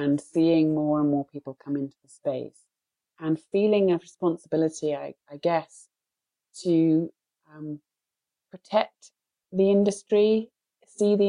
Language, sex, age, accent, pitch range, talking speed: English, female, 30-49, British, 140-165 Hz, 130 wpm